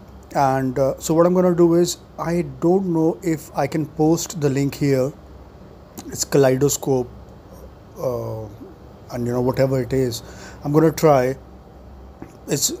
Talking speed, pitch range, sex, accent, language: 155 wpm, 125-155 Hz, male, Indian, English